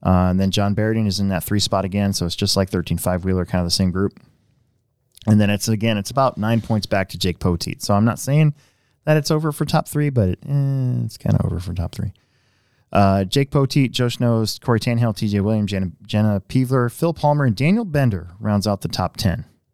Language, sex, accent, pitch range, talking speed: English, male, American, 100-135 Hz, 235 wpm